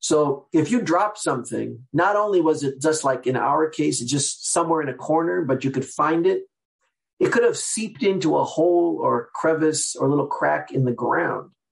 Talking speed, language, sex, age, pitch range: 210 wpm, English, male, 50-69, 140-195 Hz